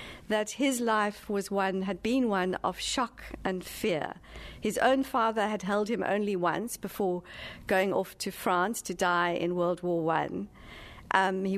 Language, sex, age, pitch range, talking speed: English, female, 50-69, 185-235 Hz, 170 wpm